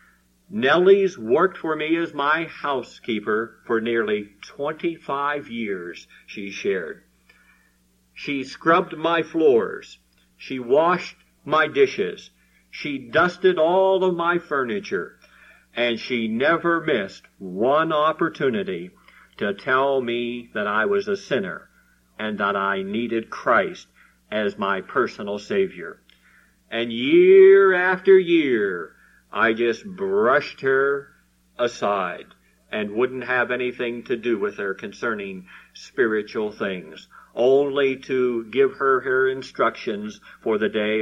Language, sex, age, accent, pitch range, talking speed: English, male, 50-69, American, 100-160 Hz, 115 wpm